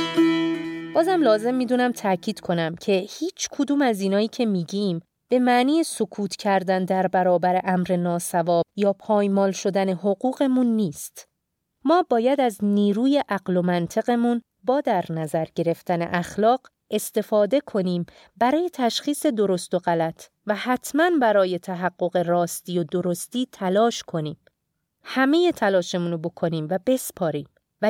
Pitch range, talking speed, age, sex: 180-235 Hz, 125 wpm, 30-49, female